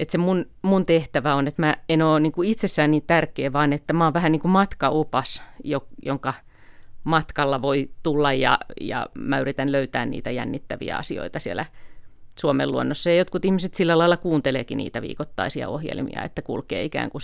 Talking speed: 180 wpm